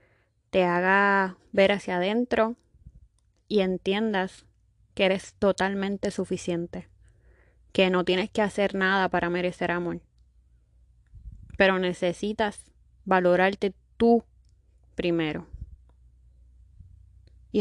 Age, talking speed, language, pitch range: 20-39, 90 wpm, Spanish, 155-200 Hz